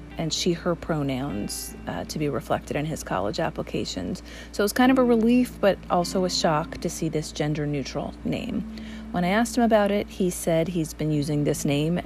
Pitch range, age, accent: 155-210 Hz, 40-59, American